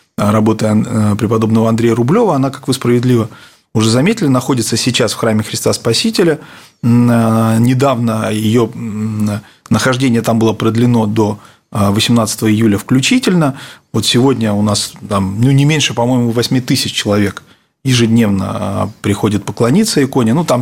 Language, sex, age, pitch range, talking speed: Russian, male, 30-49, 110-125 Hz, 130 wpm